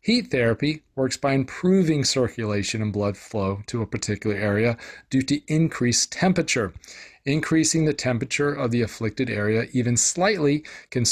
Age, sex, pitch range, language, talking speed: 40-59, male, 110-150 Hz, English, 145 wpm